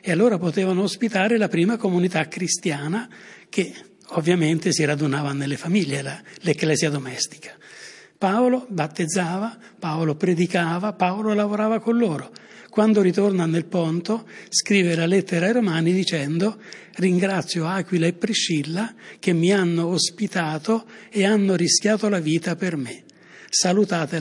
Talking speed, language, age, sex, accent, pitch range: 125 wpm, Italian, 60-79, male, native, 165-210 Hz